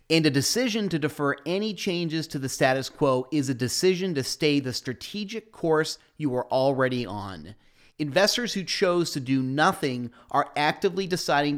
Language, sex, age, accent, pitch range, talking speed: English, male, 30-49, American, 130-165 Hz, 165 wpm